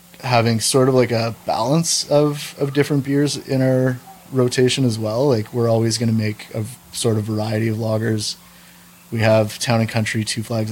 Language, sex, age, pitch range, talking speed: French, male, 20-39, 110-125 Hz, 190 wpm